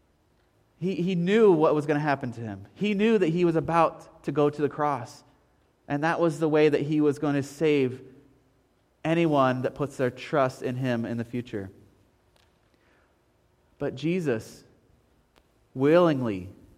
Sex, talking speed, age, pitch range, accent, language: male, 160 wpm, 30-49, 150-210 Hz, American, English